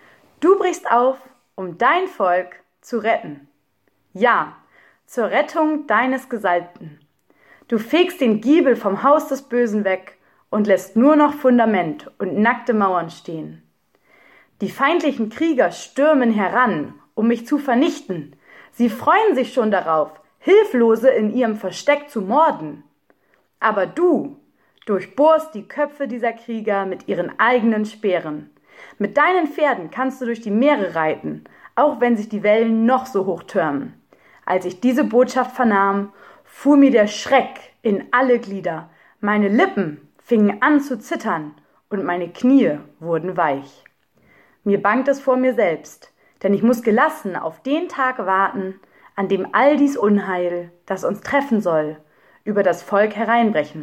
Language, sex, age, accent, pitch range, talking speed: German, female, 30-49, German, 185-260 Hz, 145 wpm